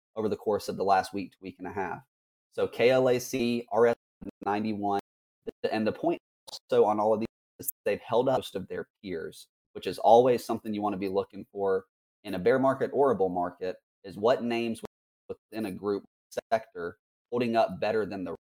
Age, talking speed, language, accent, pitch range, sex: 30-49, 200 wpm, English, American, 100-120 Hz, male